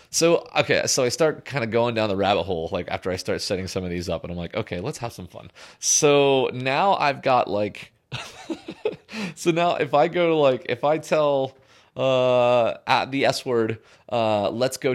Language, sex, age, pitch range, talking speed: English, male, 30-49, 110-135 Hz, 210 wpm